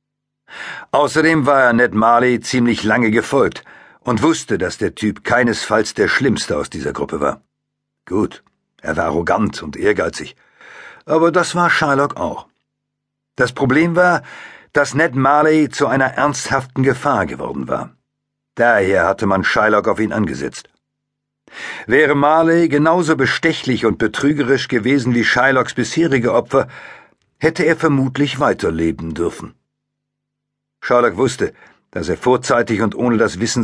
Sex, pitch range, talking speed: male, 115-145 Hz, 135 wpm